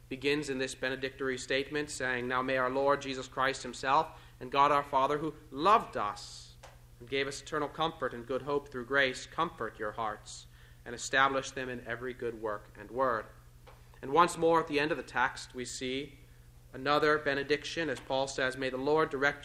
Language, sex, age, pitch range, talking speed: English, male, 30-49, 120-150 Hz, 190 wpm